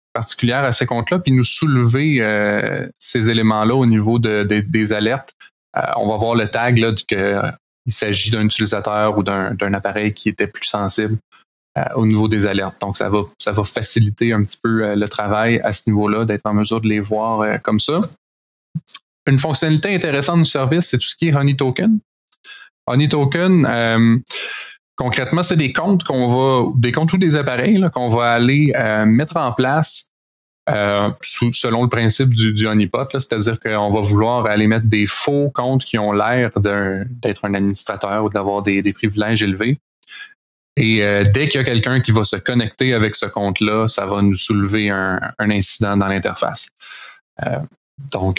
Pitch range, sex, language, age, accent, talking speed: 105-130 Hz, male, French, 20-39, Canadian, 185 wpm